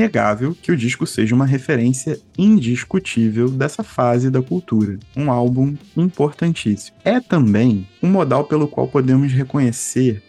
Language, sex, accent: Portuguese, male, Brazilian